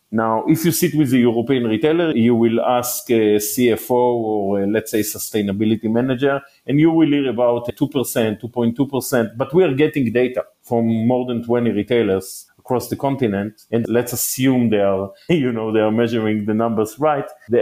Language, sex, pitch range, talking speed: English, male, 110-140 Hz, 170 wpm